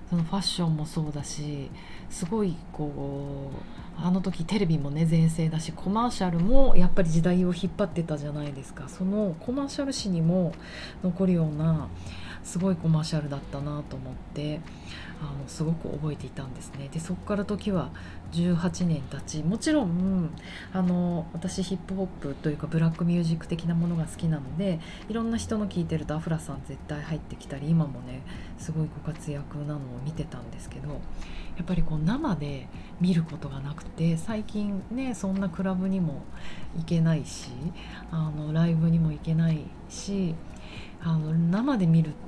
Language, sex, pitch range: Japanese, female, 150-185 Hz